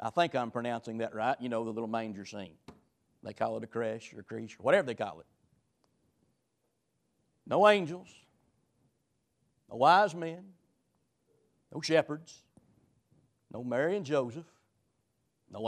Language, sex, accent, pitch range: English, male, American, 115-145 Hz